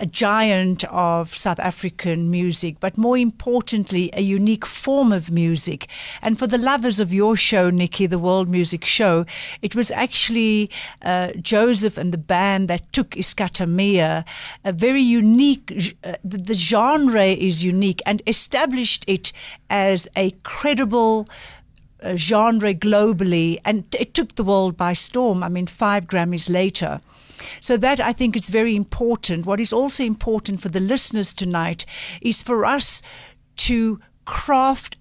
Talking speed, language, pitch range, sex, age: 145 wpm, English, 180-225 Hz, female, 60-79